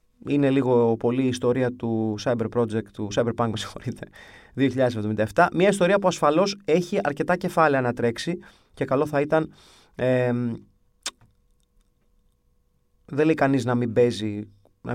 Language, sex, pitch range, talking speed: Greek, male, 115-150 Hz, 130 wpm